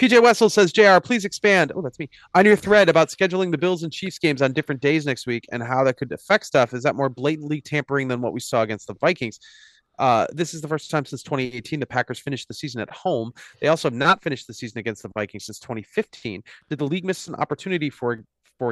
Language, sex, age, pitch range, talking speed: English, male, 30-49, 120-160 Hz, 245 wpm